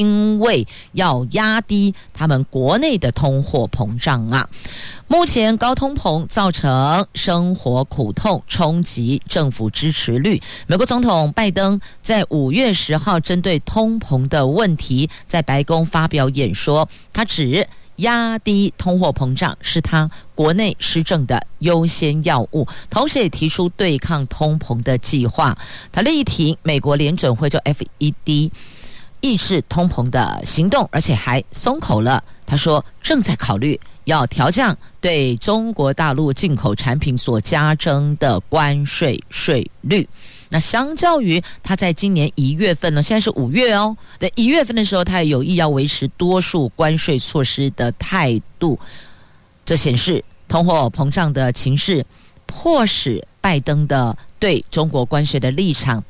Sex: female